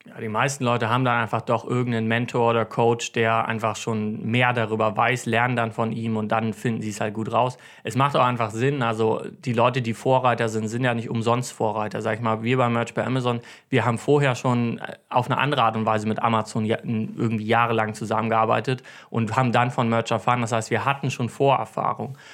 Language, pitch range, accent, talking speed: German, 115-130 Hz, German, 215 wpm